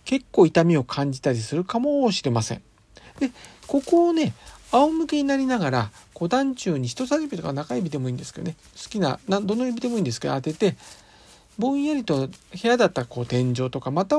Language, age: Japanese, 50-69